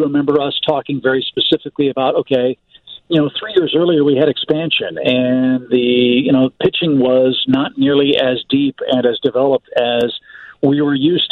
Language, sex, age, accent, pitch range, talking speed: English, male, 50-69, American, 135-170 Hz, 170 wpm